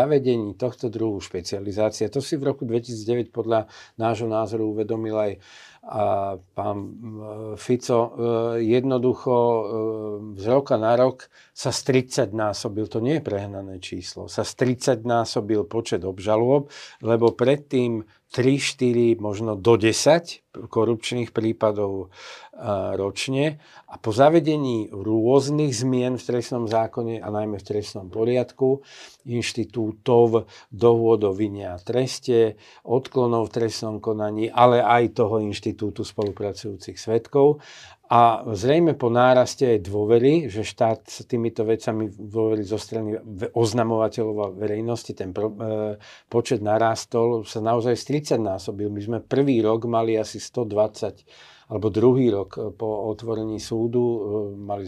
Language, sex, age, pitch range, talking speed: Slovak, male, 50-69, 105-120 Hz, 120 wpm